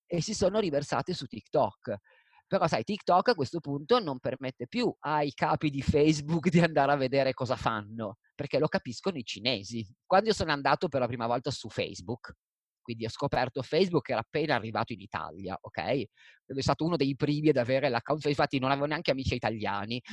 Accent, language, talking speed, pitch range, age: native, Italian, 195 wpm, 125-180 Hz, 30-49